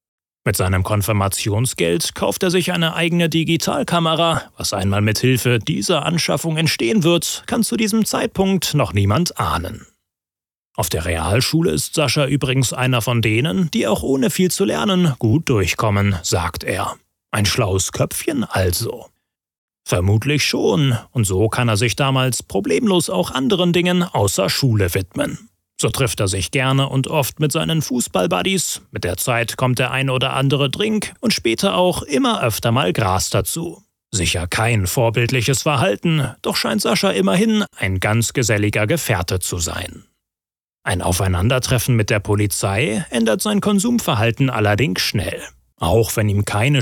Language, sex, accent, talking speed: German, male, German, 150 wpm